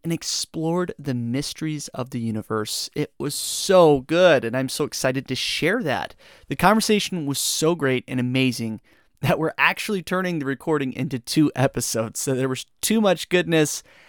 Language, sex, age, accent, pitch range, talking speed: English, male, 30-49, American, 130-165 Hz, 170 wpm